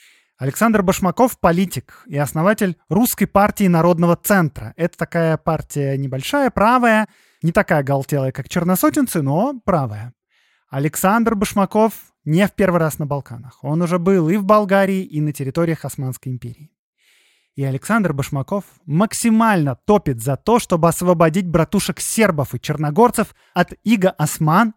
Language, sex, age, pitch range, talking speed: Russian, male, 20-39, 140-195 Hz, 135 wpm